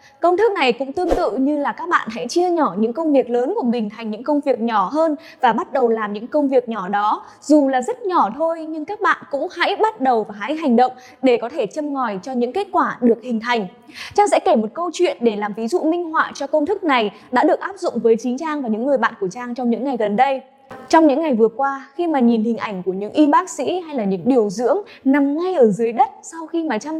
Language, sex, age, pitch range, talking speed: Vietnamese, female, 10-29, 235-325 Hz, 280 wpm